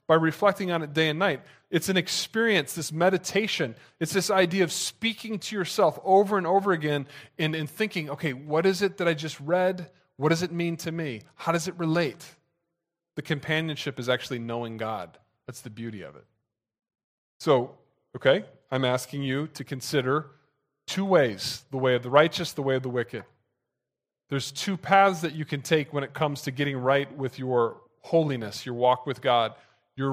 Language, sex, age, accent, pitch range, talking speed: English, male, 30-49, American, 130-170 Hz, 190 wpm